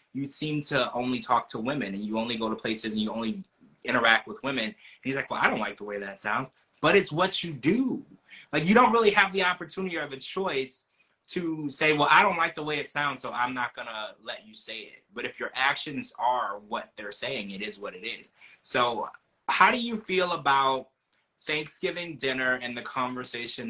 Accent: American